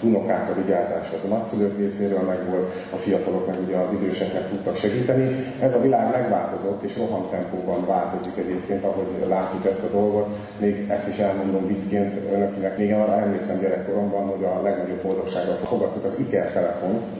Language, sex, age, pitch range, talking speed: Hungarian, male, 30-49, 95-100 Hz, 160 wpm